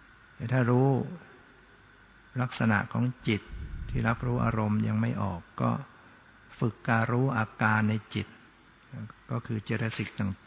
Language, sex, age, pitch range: Thai, male, 60-79, 105-120 Hz